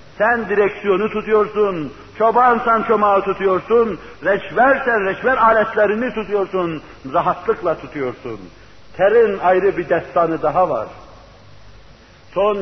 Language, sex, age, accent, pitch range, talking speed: Turkish, male, 60-79, native, 165-215 Hz, 90 wpm